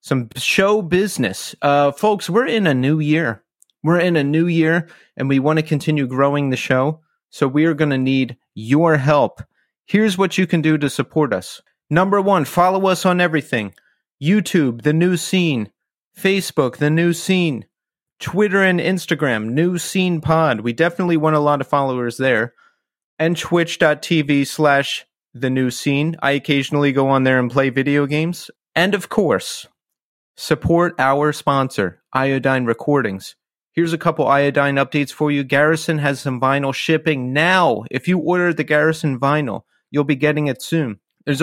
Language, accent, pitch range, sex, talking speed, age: English, American, 130-165 Hz, male, 165 wpm, 30-49